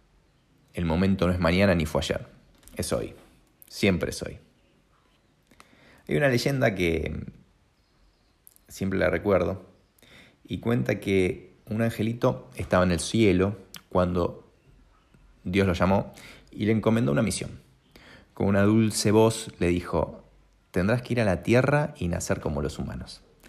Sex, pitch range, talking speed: male, 90-120 Hz, 140 wpm